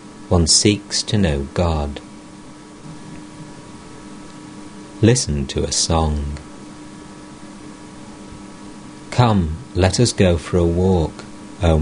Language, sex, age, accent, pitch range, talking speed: English, male, 50-69, British, 80-100 Hz, 90 wpm